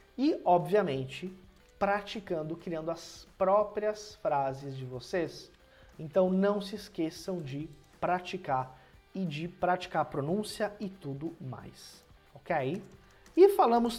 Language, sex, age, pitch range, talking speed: Portuguese, male, 20-39, 145-210 Hz, 110 wpm